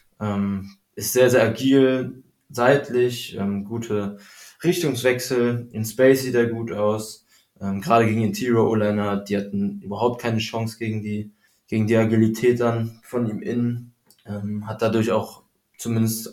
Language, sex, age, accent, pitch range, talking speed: German, male, 20-39, German, 105-125 Hz, 140 wpm